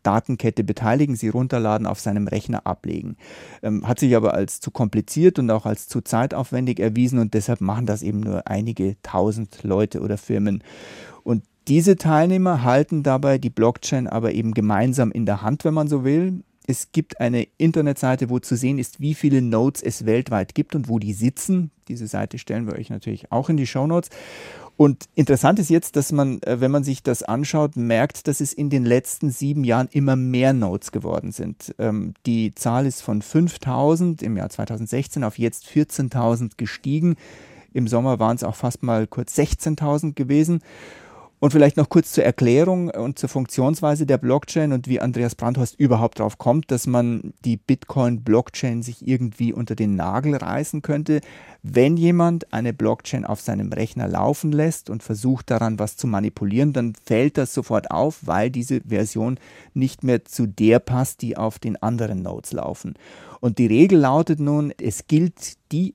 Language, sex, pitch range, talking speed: German, male, 115-145 Hz, 175 wpm